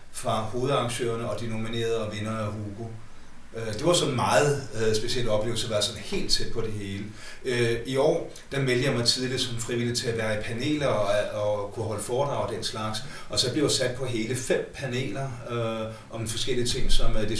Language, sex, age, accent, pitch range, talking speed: Danish, male, 40-59, native, 105-120 Hz, 195 wpm